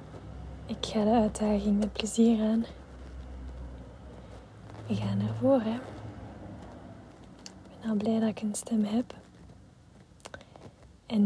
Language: Dutch